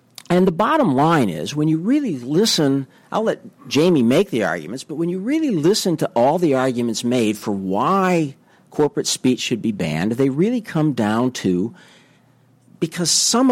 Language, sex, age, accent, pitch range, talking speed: English, male, 50-69, American, 125-180 Hz, 175 wpm